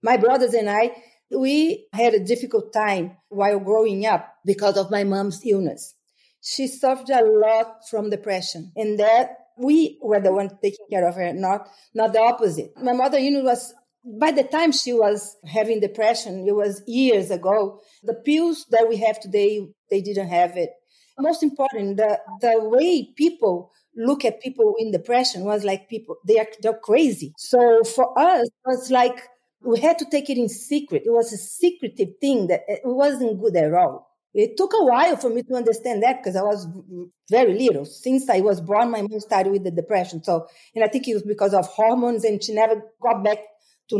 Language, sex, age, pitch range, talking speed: English, female, 40-59, 210-265 Hz, 195 wpm